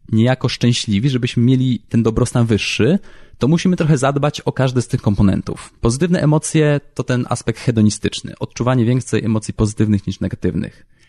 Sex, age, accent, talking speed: male, 20-39, native, 150 wpm